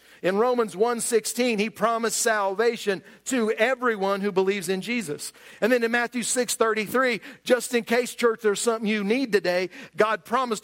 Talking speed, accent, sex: 160 wpm, American, male